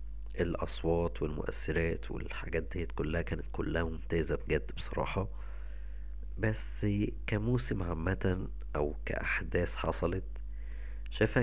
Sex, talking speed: male, 90 wpm